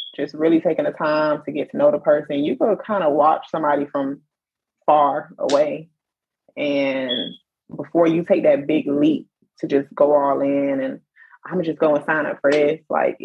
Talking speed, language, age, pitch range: 190 wpm, English, 20-39, 145-195 Hz